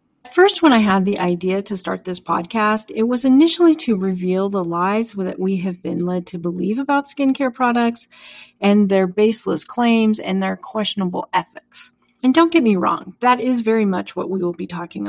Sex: female